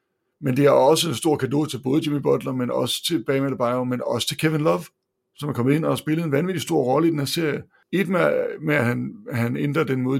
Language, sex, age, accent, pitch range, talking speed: Danish, male, 60-79, native, 130-160 Hz, 255 wpm